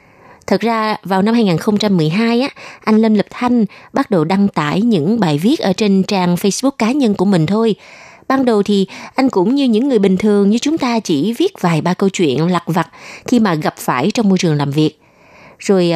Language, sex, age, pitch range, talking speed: Vietnamese, female, 20-39, 175-240 Hz, 210 wpm